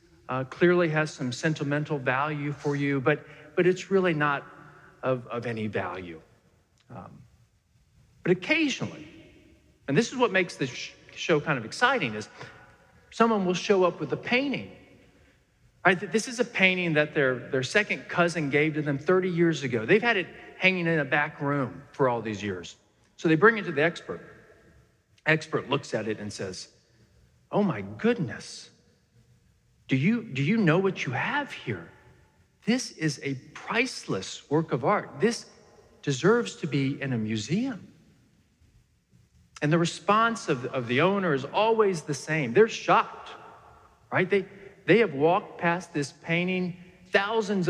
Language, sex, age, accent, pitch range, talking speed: English, male, 40-59, American, 145-200 Hz, 160 wpm